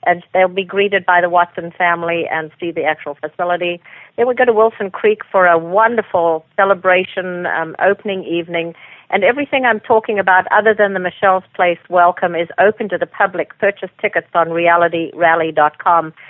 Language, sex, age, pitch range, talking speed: English, female, 50-69, 175-215 Hz, 170 wpm